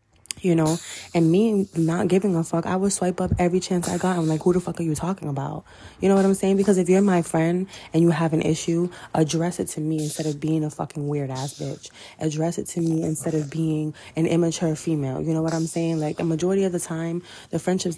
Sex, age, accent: female, 20-39, American